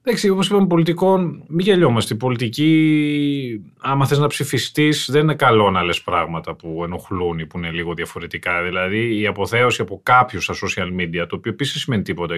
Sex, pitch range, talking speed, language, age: male, 100-150 Hz, 180 wpm, Greek, 30-49